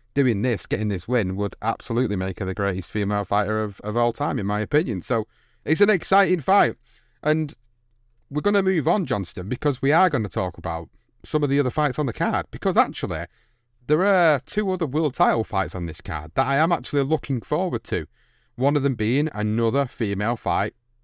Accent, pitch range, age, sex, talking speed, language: British, 105-140 Hz, 30-49, male, 210 wpm, English